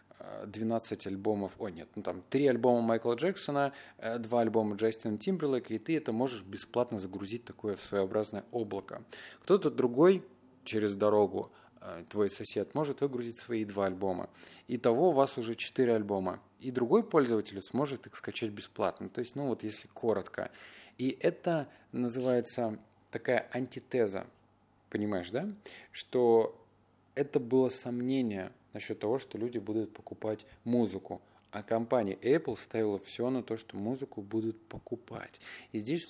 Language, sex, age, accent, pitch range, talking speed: Russian, male, 20-39, native, 105-130 Hz, 140 wpm